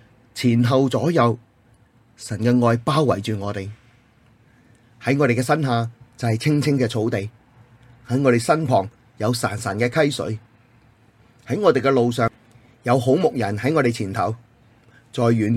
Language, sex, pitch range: Chinese, male, 115-125 Hz